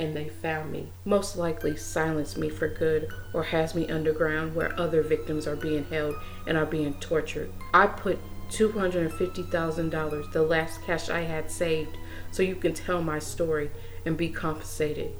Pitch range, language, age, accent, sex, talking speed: 145-170 Hz, English, 40-59, American, female, 165 wpm